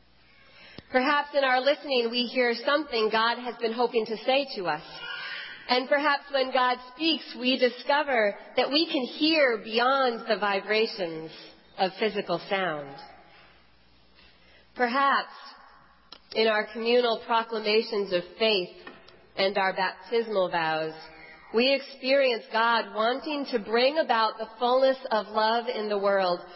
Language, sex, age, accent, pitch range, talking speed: English, female, 40-59, American, 190-255 Hz, 130 wpm